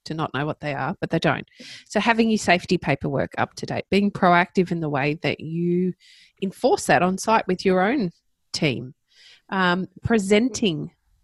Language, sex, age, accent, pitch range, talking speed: English, female, 20-39, Australian, 170-215 Hz, 180 wpm